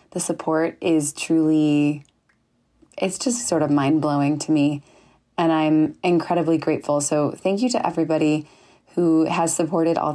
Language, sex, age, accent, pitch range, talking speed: English, female, 20-39, American, 155-190 Hz, 150 wpm